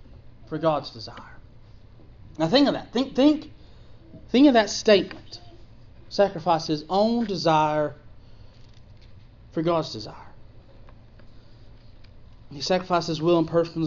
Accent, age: American, 30-49